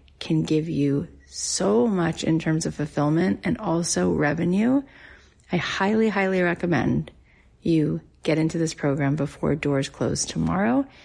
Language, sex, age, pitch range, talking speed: English, female, 30-49, 155-175 Hz, 135 wpm